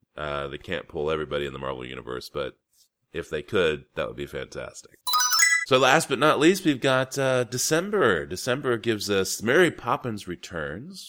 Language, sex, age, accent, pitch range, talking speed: English, male, 30-49, American, 80-110 Hz, 175 wpm